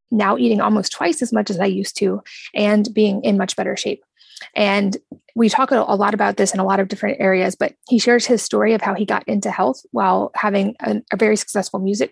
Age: 20-39